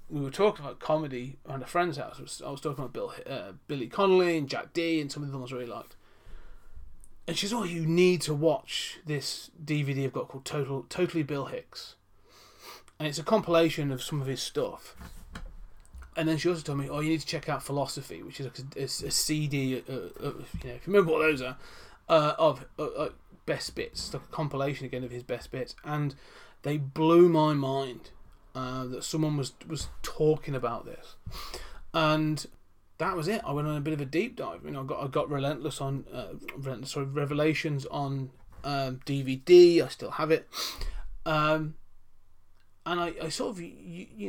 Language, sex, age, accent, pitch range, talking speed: English, male, 30-49, British, 130-165 Hz, 205 wpm